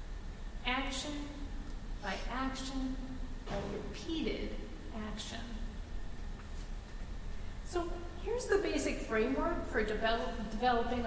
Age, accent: 40-59, American